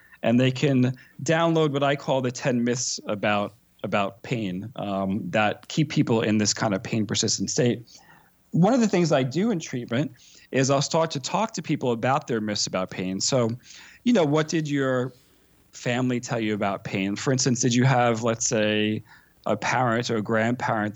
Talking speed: 190 wpm